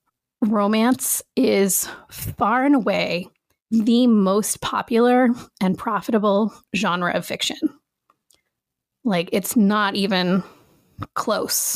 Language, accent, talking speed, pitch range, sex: English, American, 90 wpm, 195-240 Hz, female